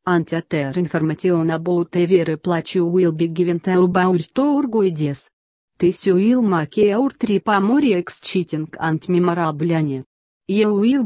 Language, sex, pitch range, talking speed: English, female, 165-200 Hz, 120 wpm